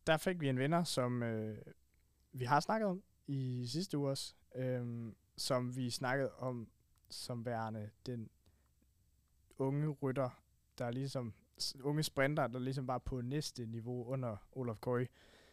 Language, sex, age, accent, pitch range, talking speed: Danish, male, 20-39, native, 110-135 Hz, 155 wpm